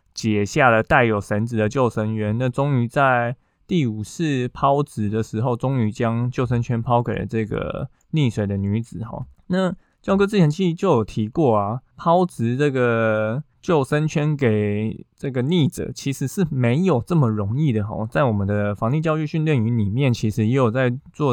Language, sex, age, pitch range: Chinese, male, 20-39, 110-145 Hz